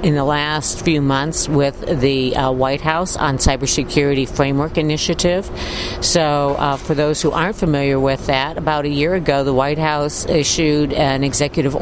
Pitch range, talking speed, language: 140-170 Hz, 170 wpm, English